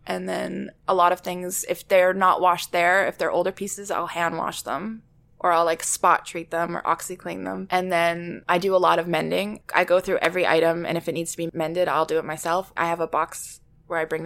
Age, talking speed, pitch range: 20-39, 255 wpm, 170-230 Hz